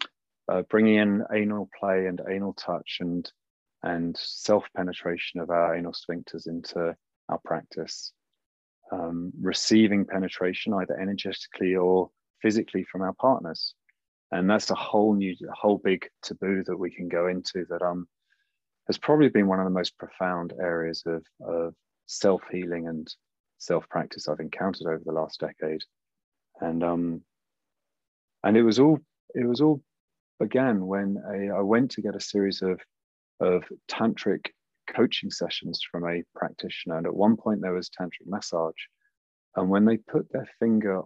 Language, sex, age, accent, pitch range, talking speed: English, male, 30-49, British, 85-105 Hz, 155 wpm